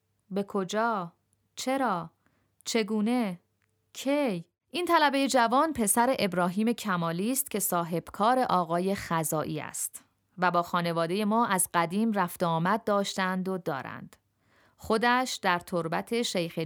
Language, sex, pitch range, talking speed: Persian, female, 170-220 Hz, 115 wpm